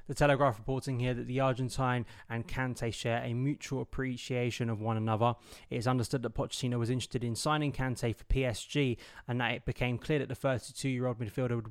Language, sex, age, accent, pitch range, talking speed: English, male, 20-39, British, 115-135 Hz, 195 wpm